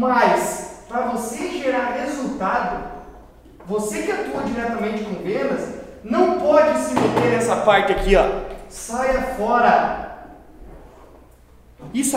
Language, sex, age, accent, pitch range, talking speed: Portuguese, male, 20-39, Brazilian, 220-265 Hz, 105 wpm